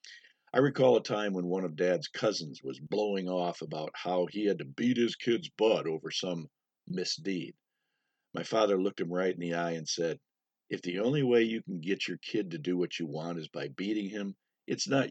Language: English